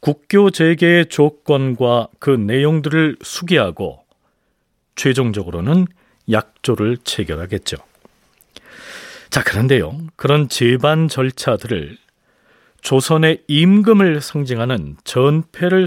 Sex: male